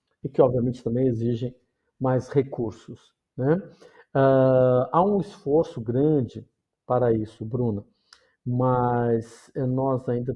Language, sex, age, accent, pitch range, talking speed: Portuguese, male, 50-69, Brazilian, 120-155 Hz, 105 wpm